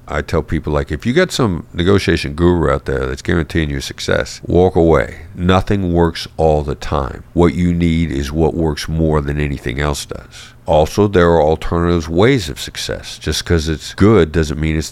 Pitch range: 75-100 Hz